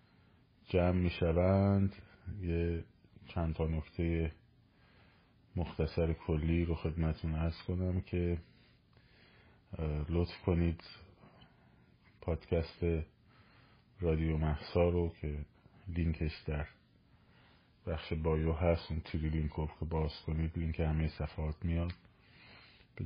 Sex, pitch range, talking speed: male, 80-95 Hz, 95 wpm